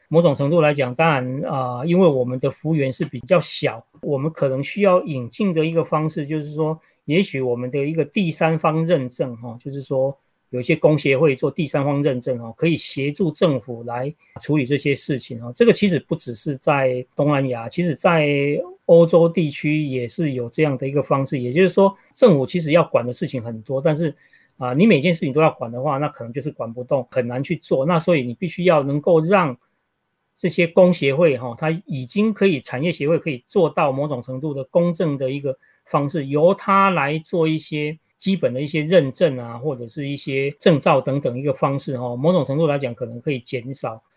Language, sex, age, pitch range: Chinese, male, 40-59, 130-165 Hz